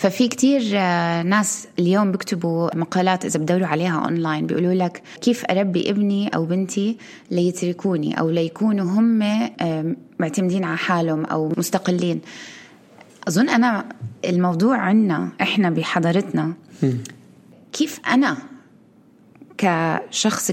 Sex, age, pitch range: female, 20-39, 175-225 Hz